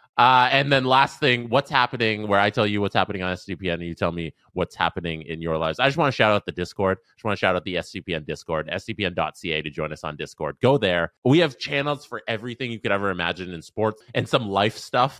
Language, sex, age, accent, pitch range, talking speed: English, male, 20-39, American, 90-125 Hz, 255 wpm